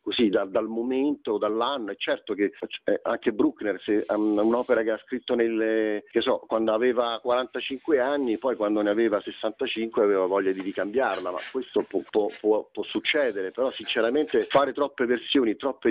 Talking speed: 170 wpm